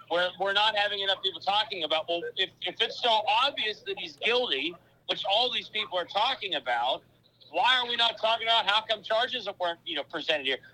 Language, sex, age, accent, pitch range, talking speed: English, male, 50-69, American, 220-290 Hz, 210 wpm